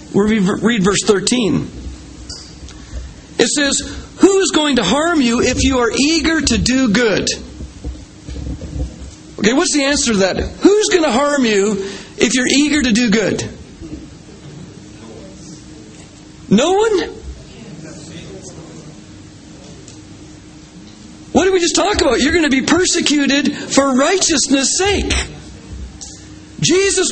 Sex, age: male, 40-59